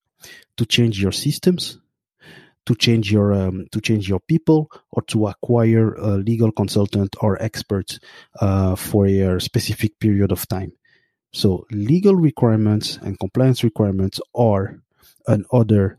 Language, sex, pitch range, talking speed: English, male, 105-130 Hz, 130 wpm